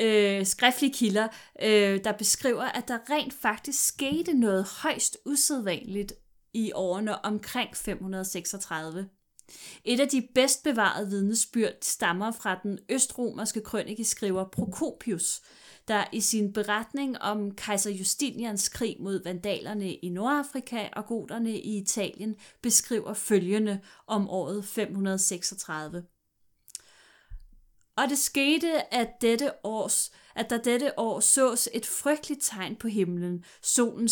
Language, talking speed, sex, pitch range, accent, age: Danish, 120 wpm, female, 195-245 Hz, native, 30-49